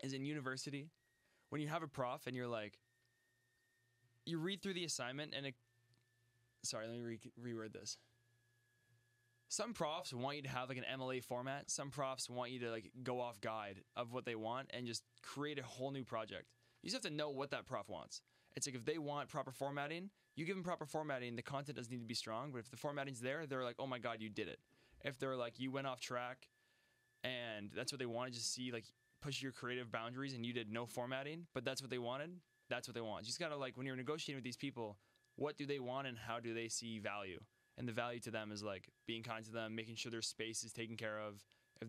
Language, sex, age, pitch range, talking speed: English, male, 20-39, 120-135 Hz, 240 wpm